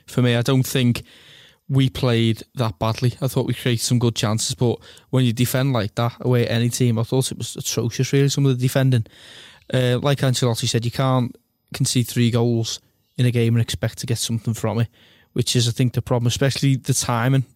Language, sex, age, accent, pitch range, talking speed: English, male, 20-39, British, 115-130 Hz, 220 wpm